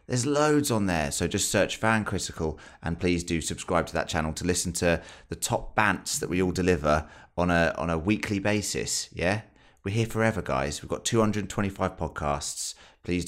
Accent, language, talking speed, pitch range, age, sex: British, English, 190 wpm, 80-95 Hz, 30-49, male